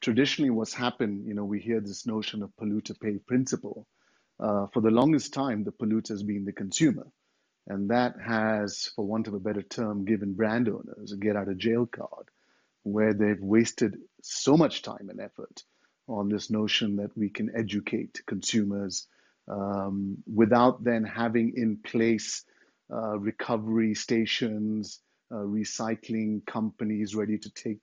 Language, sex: English, male